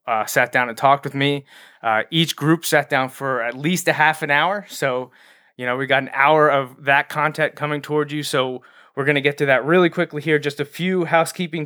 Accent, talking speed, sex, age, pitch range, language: American, 235 wpm, male, 20-39, 135-155 Hz, English